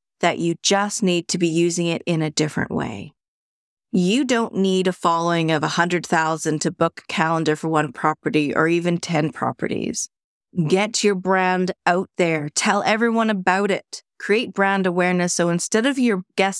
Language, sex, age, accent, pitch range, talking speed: English, female, 30-49, American, 160-195 Hz, 170 wpm